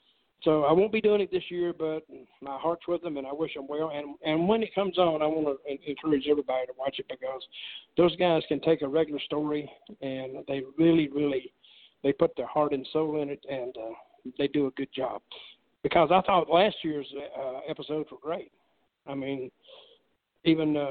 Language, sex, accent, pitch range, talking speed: English, male, American, 140-180 Hz, 205 wpm